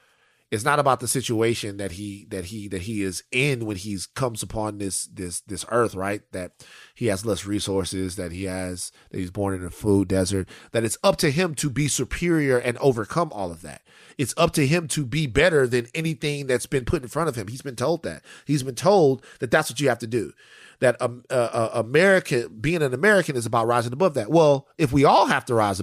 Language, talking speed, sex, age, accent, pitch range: English, 235 wpm, male, 30-49, American, 110-160 Hz